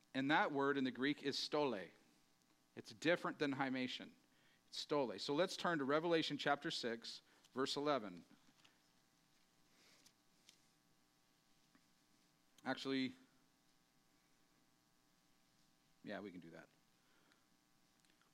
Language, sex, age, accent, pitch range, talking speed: English, male, 40-59, American, 115-165 Hz, 100 wpm